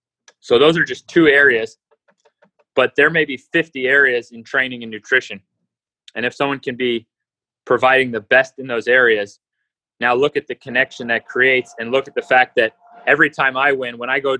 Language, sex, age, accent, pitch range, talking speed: English, male, 30-49, American, 120-140 Hz, 195 wpm